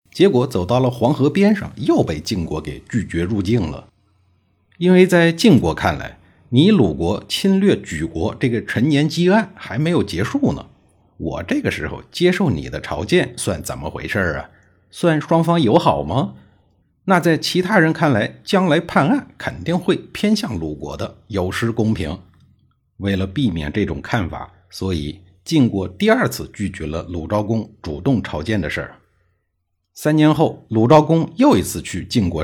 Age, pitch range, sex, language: 50-69, 90-150 Hz, male, Chinese